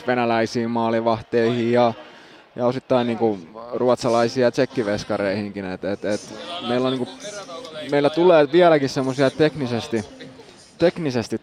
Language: Finnish